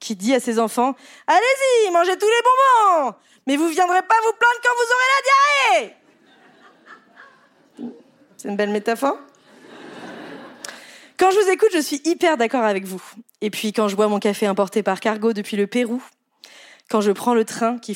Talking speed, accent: 190 wpm, French